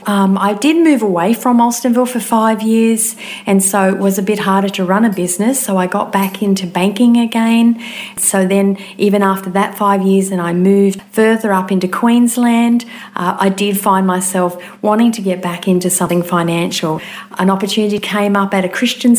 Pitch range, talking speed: 180-210 Hz, 190 wpm